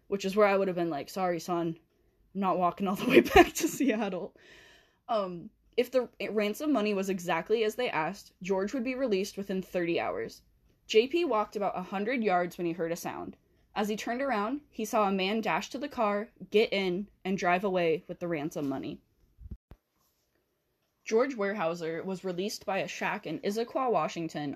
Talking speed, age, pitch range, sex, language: 185 wpm, 10-29, 175-220 Hz, female, English